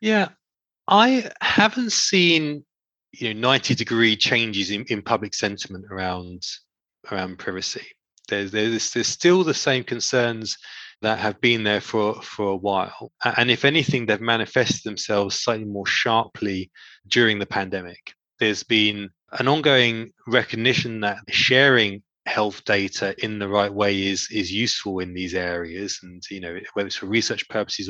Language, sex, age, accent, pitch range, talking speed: English, male, 20-39, British, 95-115 Hz, 150 wpm